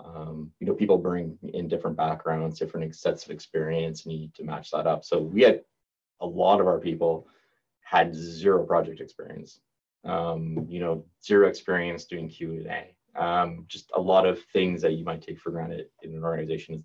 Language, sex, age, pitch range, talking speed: English, male, 20-39, 80-90 Hz, 200 wpm